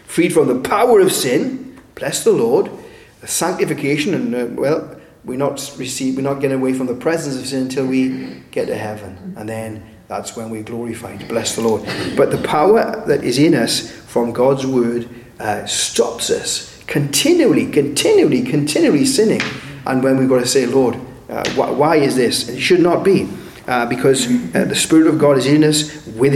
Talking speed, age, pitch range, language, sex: 185 wpm, 30-49, 120-165 Hz, English, male